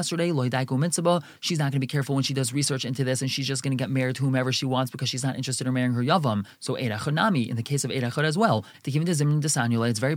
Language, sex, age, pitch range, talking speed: English, male, 20-39, 130-165 Hz, 275 wpm